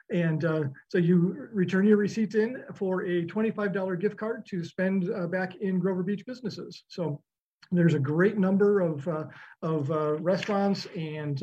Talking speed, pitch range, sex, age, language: 170 wpm, 170-195 Hz, male, 50-69, English